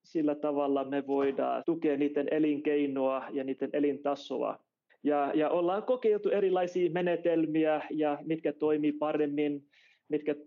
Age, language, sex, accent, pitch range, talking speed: 30-49, Finnish, male, native, 145-165 Hz, 110 wpm